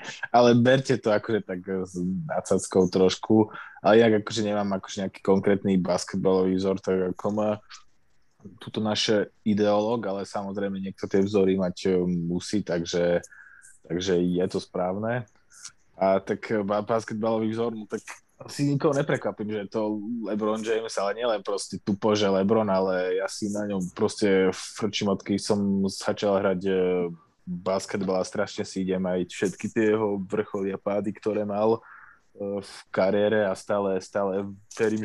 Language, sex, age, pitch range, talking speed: Slovak, male, 20-39, 95-105 Hz, 140 wpm